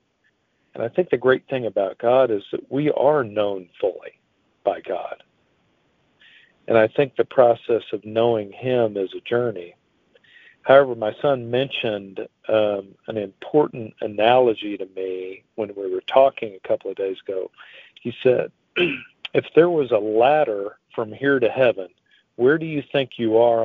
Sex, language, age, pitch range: male, English, 50-69, 110-135 Hz